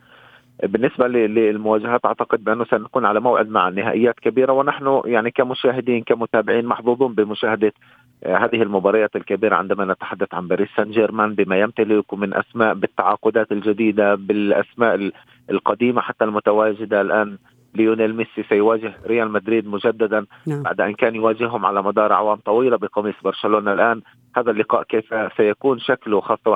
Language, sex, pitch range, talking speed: Arabic, male, 105-120 Hz, 135 wpm